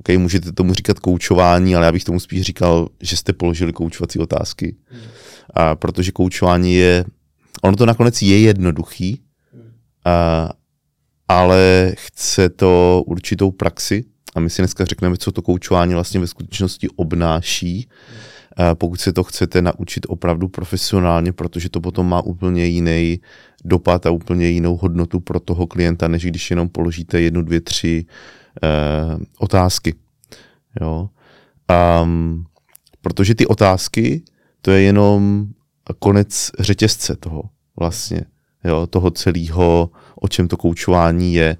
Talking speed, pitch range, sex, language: 130 wpm, 85-100 Hz, male, Czech